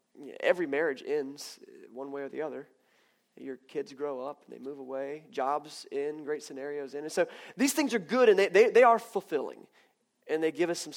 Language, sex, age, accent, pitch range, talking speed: English, male, 30-49, American, 150-235 Hz, 210 wpm